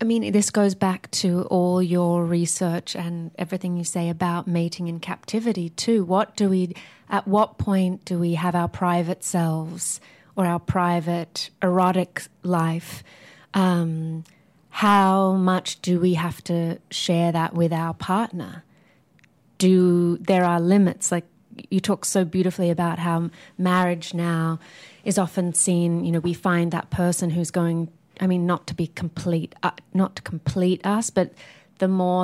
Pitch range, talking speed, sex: 170-190 Hz, 155 wpm, female